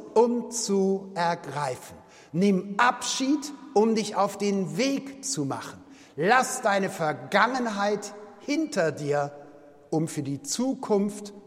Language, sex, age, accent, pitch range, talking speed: German, male, 60-79, German, 170-225 Hz, 110 wpm